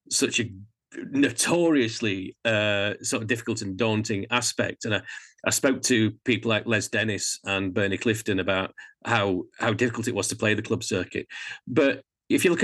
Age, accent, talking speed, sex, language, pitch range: 40-59, British, 175 wpm, male, English, 110-135 Hz